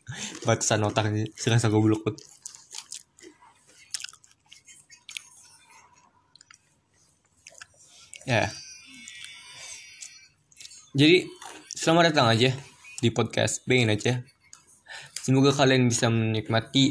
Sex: male